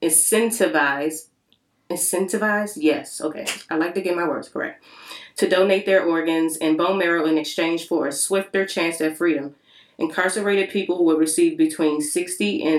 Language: English